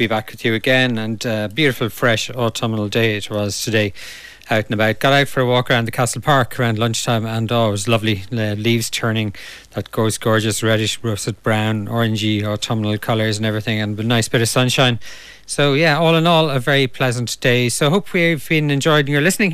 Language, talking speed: English, 210 wpm